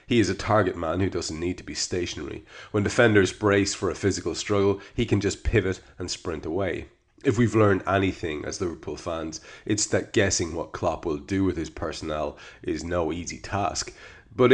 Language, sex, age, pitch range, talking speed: English, male, 30-49, 90-105 Hz, 195 wpm